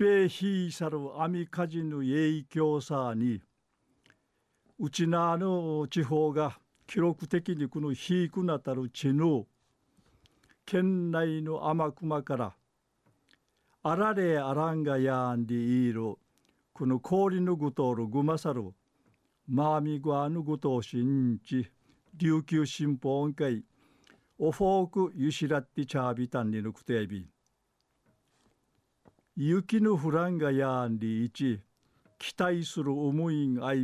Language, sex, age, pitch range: Japanese, male, 50-69, 130-165 Hz